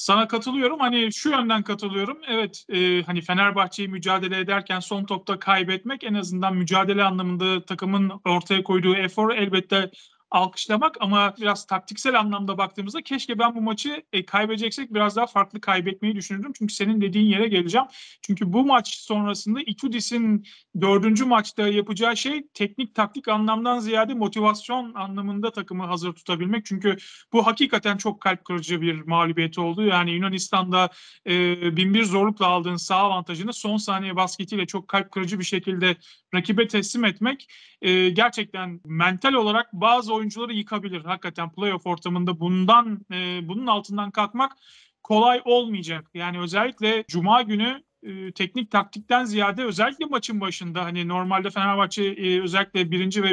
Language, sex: Turkish, male